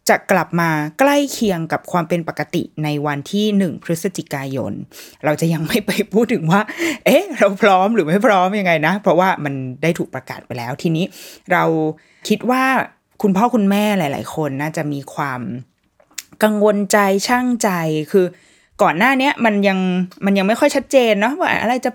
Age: 20-39